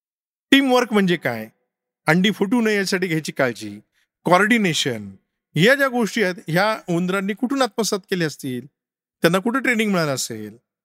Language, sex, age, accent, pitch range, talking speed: Marathi, male, 50-69, native, 145-220 Hz, 140 wpm